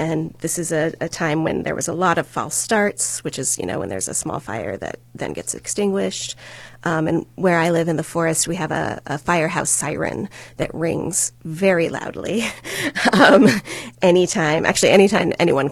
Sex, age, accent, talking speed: female, 30-49, American, 190 wpm